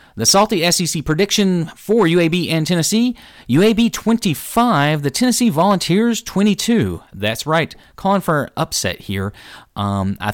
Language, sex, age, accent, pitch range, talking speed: English, male, 30-49, American, 105-150 Hz, 130 wpm